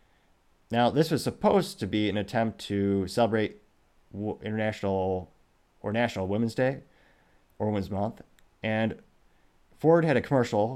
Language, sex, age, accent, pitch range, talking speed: English, male, 30-49, American, 95-115 Hz, 130 wpm